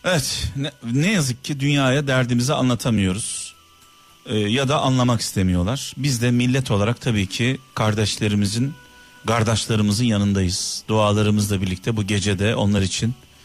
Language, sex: Turkish, male